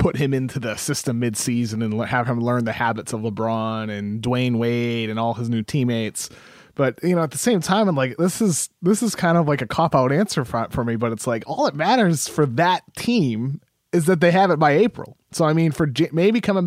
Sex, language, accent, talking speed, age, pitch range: male, English, American, 245 wpm, 20-39, 120-165 Hz